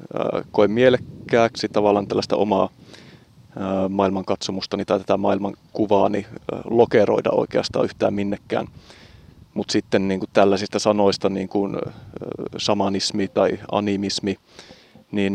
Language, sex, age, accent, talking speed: Finnish, male, 30-49, native, 100 wpm